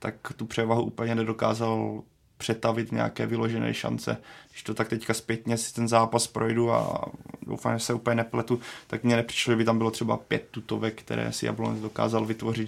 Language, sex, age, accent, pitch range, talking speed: Czech, male, 20-39, native, 115-120 Hz, 185 wpm